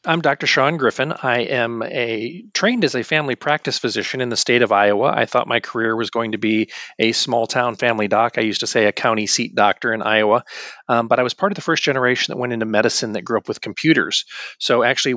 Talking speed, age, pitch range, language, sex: 235 wpm, 40-59, 105-120 Hz, English, male